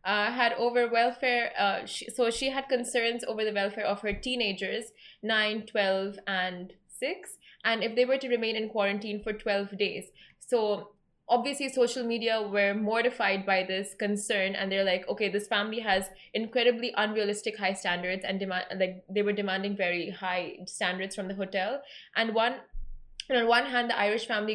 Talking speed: 170 wpm